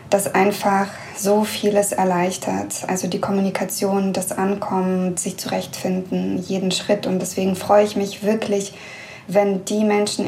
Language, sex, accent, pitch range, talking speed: German, female, German, 195-220 Hz, 135 wpm